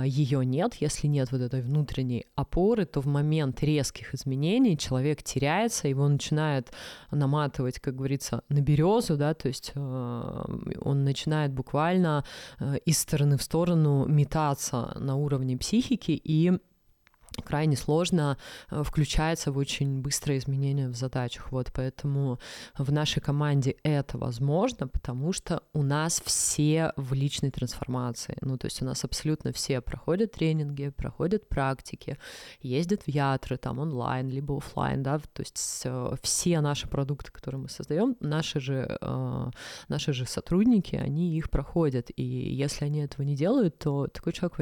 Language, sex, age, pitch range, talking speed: Russian, female, 20-39, 130-155 Hz, 145 wpm